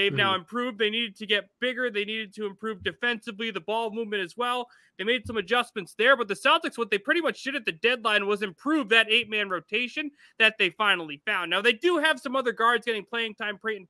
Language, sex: English, male